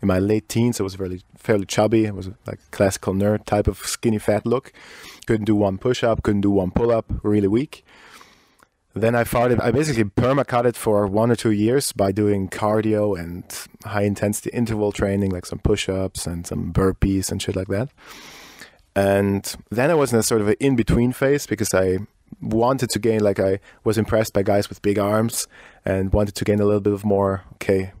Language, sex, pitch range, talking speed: English, male, 100-115 Hz, 205 wpm